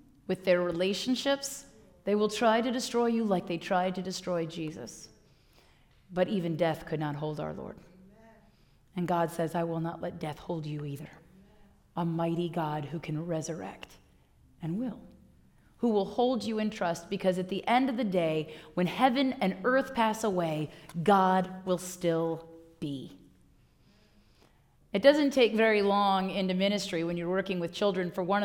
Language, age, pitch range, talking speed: English, 30-49, 175-245 Hz, 165 wpm